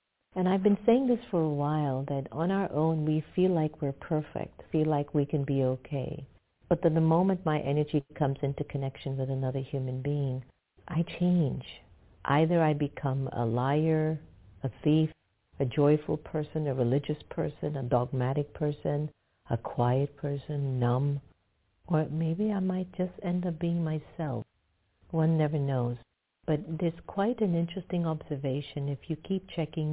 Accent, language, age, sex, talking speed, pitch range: American, English, 50-69, female, 160 wpm, 135-165 Hz